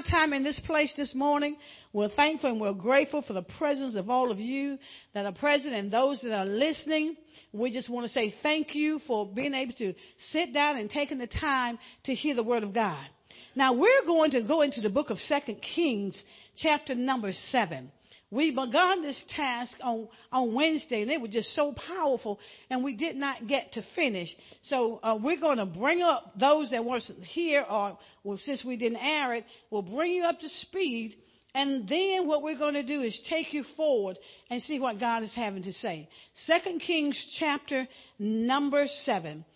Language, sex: English, female